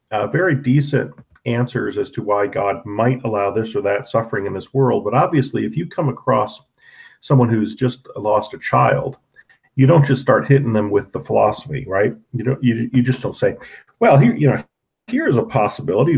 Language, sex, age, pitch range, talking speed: English, male, 40-59, 110-135 Hz, 200 wpm